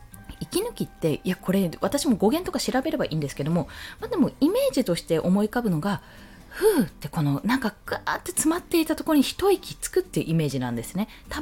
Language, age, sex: Japanese, 20-39, female